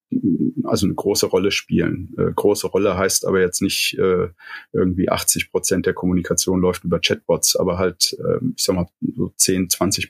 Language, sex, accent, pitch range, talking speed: German, male, German, 90-125 Hz, 180 wpm